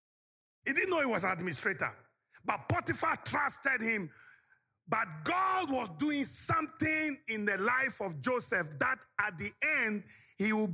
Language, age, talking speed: English, 50-69, 150 wpm